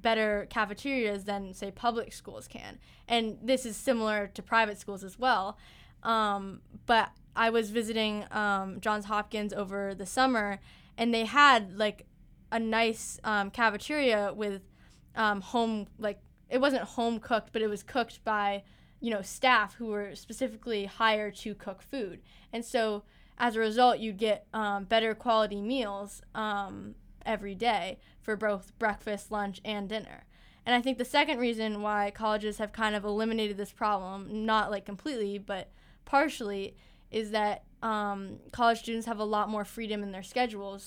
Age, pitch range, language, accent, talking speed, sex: 10-29, 205-225 Hz, English, American, 160 wpm, female